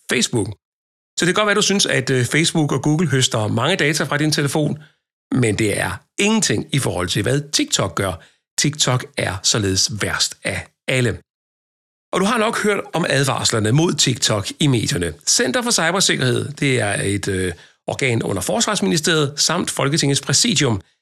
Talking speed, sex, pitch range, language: 165 wpm, male, 115-155 Hz, Danish